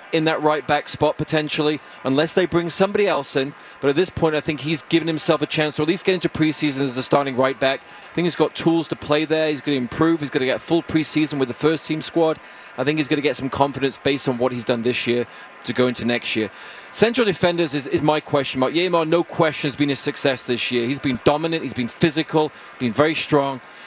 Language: English